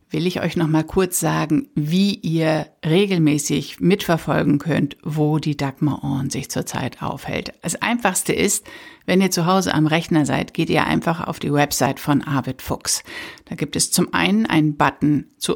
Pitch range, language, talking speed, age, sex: 150-180 Hz, German, 175 wpm, 60-79, female